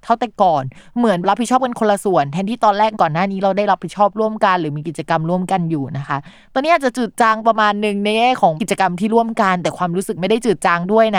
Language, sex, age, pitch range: Thai, female, 20-39, 165-220 Hz